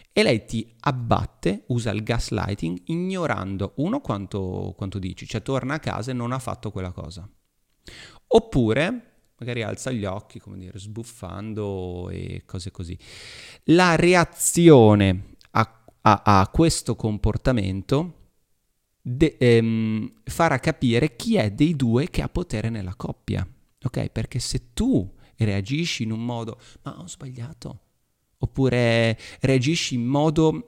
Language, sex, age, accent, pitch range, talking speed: Italian, male, 30-49, native, 105-140 Hz, 130 wpm